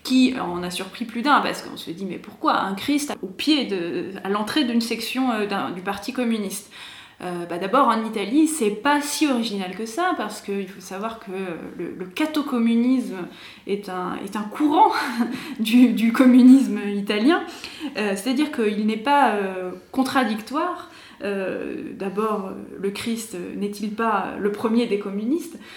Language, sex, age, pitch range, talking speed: French, female, 20-39, 205-270 Hz, 165 wpm